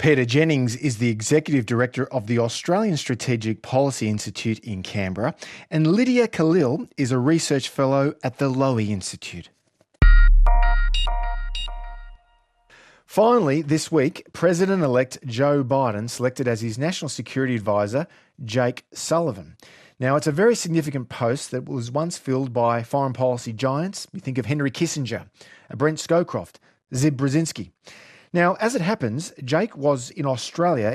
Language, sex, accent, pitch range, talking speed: English, male, Australian, 125-170 Hz, 135 wpm